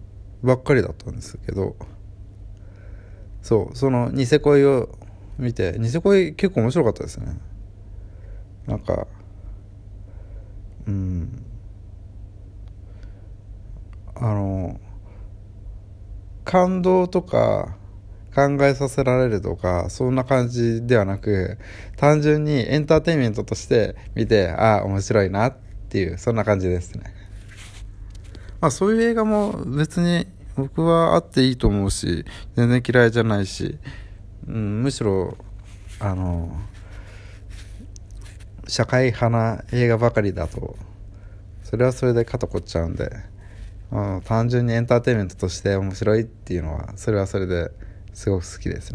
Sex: male